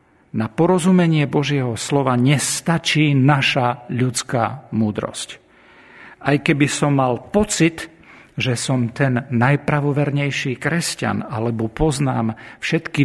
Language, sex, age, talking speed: Slovak, male, 50-69, 95 wpm